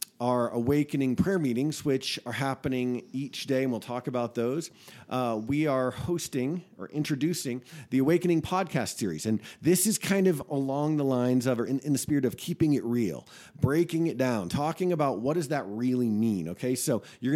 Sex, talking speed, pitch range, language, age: male, 190 wpm, 120-155 Hz, English, 40-59